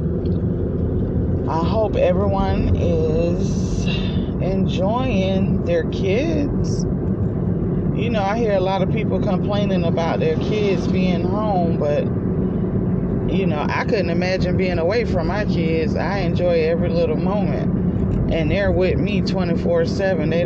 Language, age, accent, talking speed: English, 20-39, American, 130 wpm